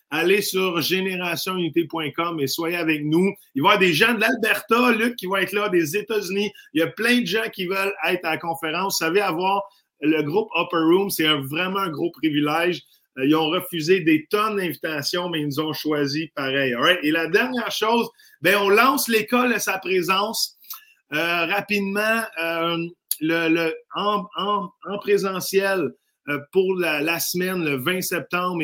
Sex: male